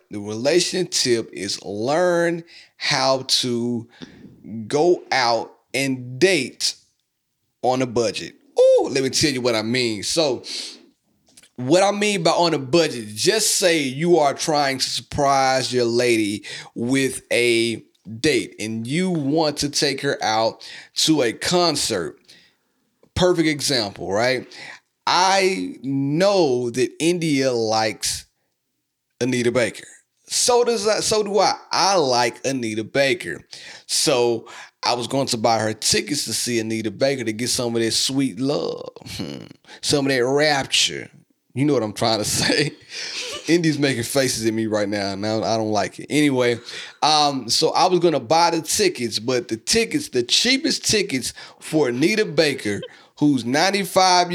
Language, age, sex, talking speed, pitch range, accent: English, 30-49, male, 150 wpm, 115-165 Hz, American